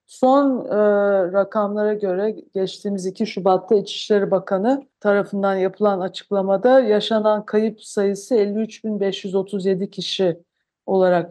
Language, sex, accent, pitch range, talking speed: Turkish, female, native, 195-225 Hz, 95 wpm